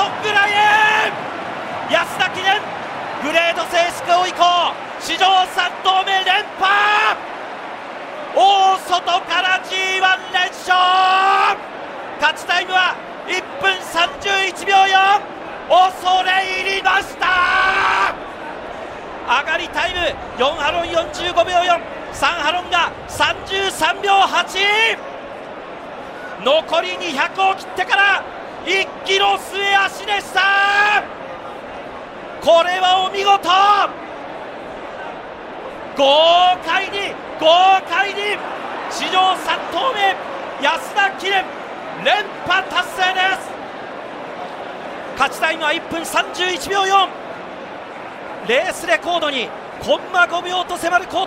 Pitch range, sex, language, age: 335-385 Hz, male, Japanese, 40-59